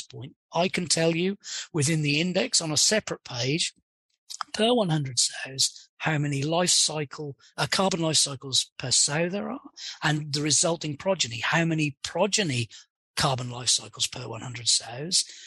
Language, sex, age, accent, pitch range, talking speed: English, male, 40-59, British, 130-170 Hz, 155 wpm